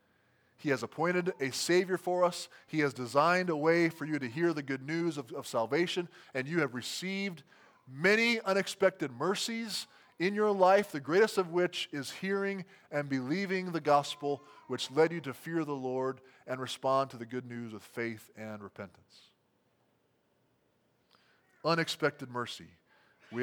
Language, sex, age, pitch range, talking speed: English, male, 20-39, 125-165 Hz, 160 wpm